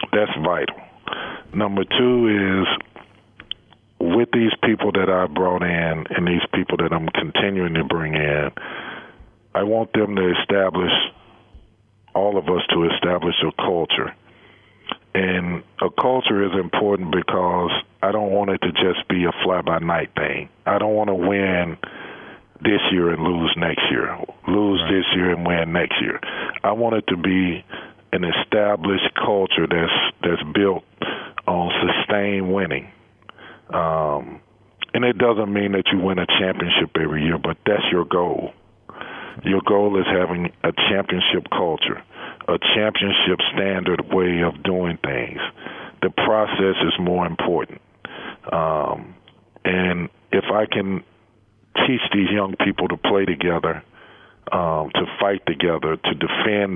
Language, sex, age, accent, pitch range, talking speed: English, male, 50-69, American, 85-100 Hz, 145 wpm